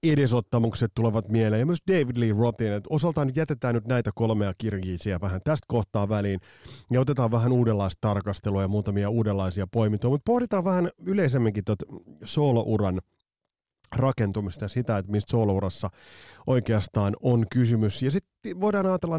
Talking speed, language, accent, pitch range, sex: 145 wpm, Finnish, native, 100-130 Hz, male